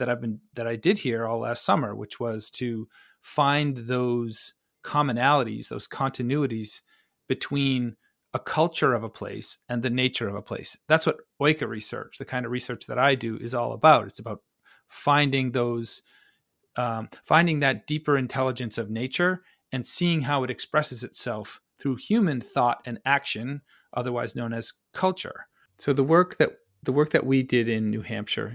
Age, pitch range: 40-59, 115-140 Hz